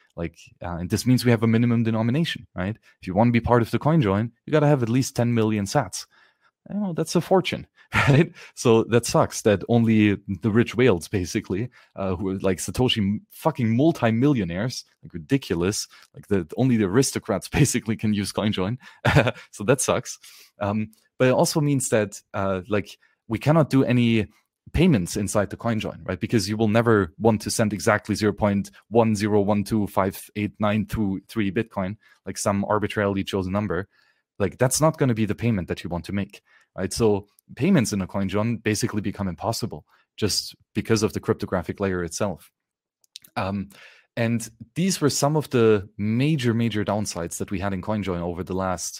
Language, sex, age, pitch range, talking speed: English, male, 30-49, 100-120 Hz, 175 wpm